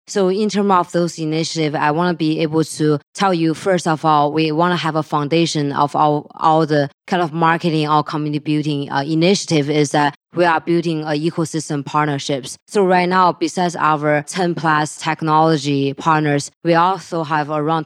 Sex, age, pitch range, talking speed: female, 20-39, 145-160 Hz, 185 wpm